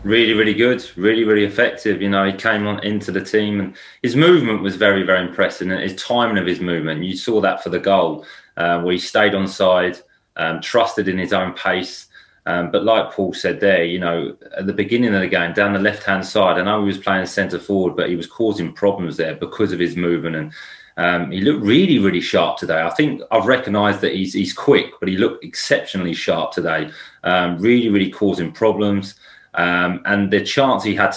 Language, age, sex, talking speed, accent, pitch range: English, 30-49, male, 220 wpm, British, 90-105 Hz